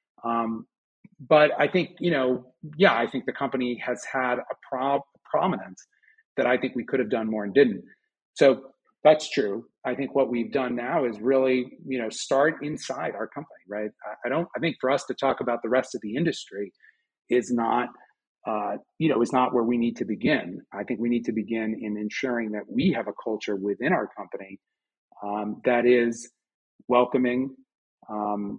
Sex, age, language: male, 40-59, English